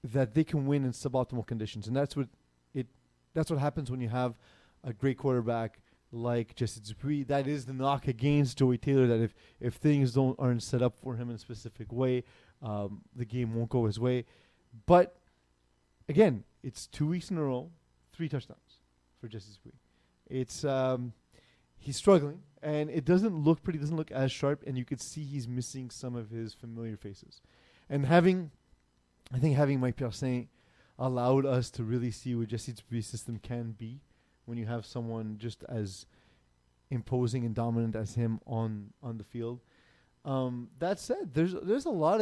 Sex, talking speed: male, 180 wpm